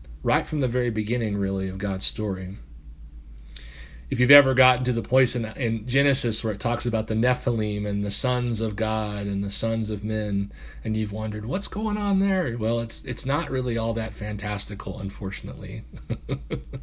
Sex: male